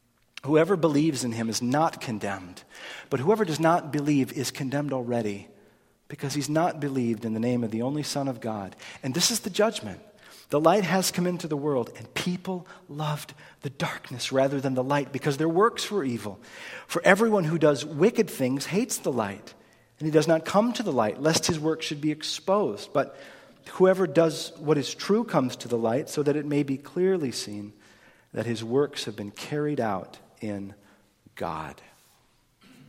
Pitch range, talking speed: 115-155 Hz, 190 wpm